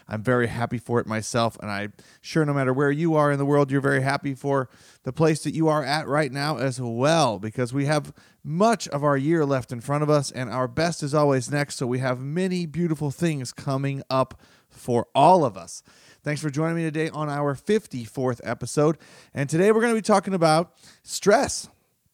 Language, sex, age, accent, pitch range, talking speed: English, male, 30-49, American, 130-170 Hz, 215 wpm